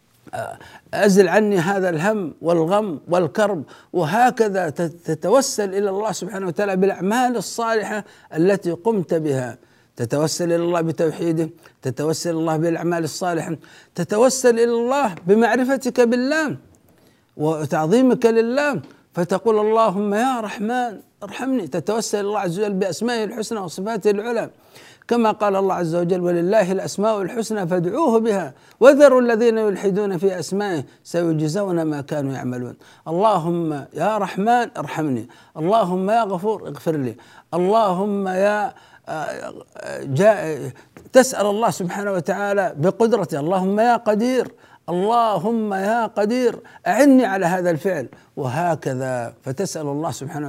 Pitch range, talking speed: 165-225 Hz, 115 wpm